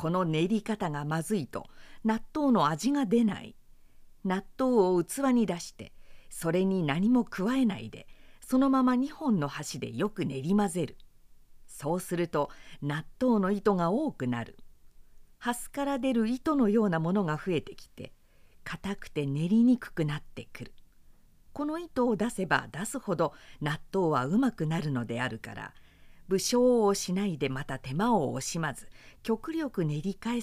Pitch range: 150-245 Hz